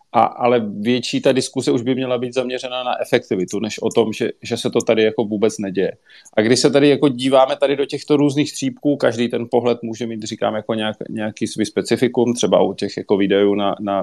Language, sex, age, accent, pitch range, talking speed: Czech, male, 30-49, native, 110-125 Hz, 225 wpm